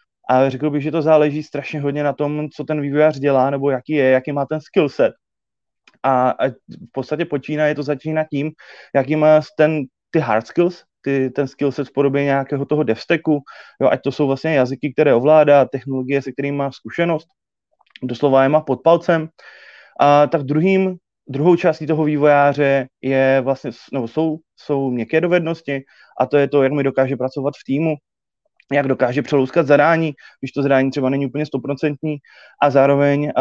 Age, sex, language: 20-39, male, Czech